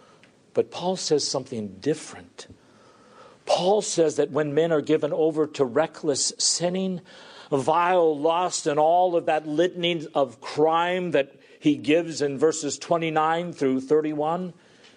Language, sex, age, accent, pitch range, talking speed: English, male, 50-69, American, 135-180 Hz, 130 wpm